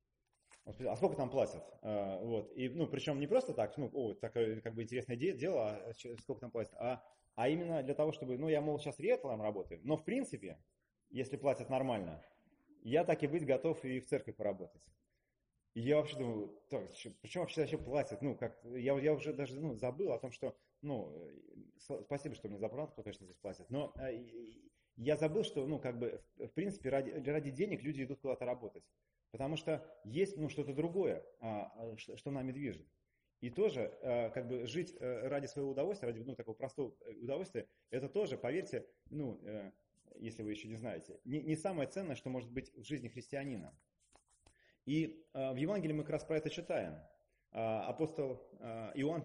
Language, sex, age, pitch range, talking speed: Russian, male, 30-49, 120-155 Hz, 180 wpm